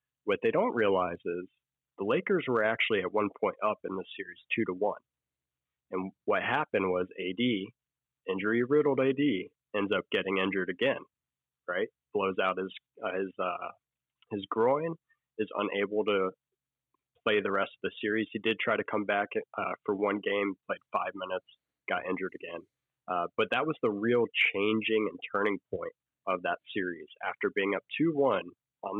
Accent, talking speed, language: American, 175 wpm, English